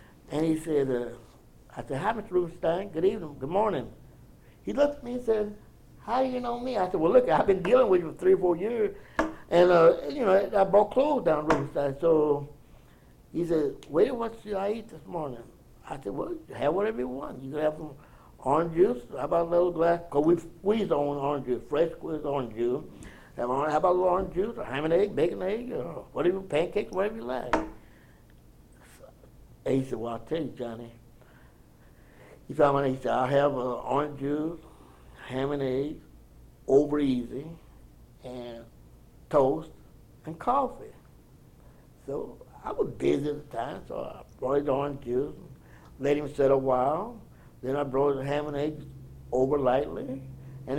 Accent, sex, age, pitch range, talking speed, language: American, male, 60-79, 130-175 Hz, 190 wpm, English